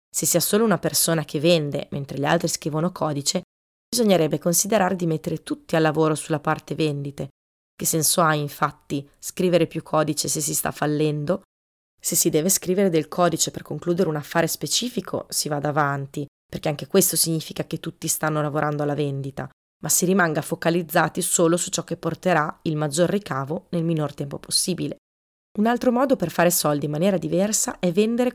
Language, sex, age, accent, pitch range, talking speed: Italian, female, 20-39, native, 150-180 Hz, 180 wpm